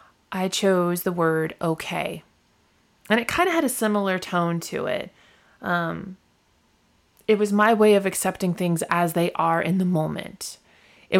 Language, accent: English, American